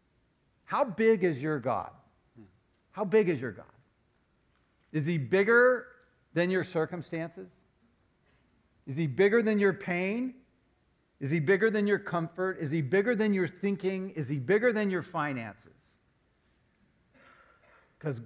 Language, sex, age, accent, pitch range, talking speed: English, male, 50-69, American, 135-195 Hz, 135 wpm